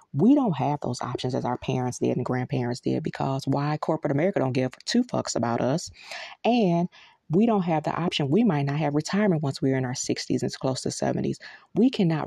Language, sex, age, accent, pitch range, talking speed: English, female, 30-49, American, 130-175 Hz, 220 wpm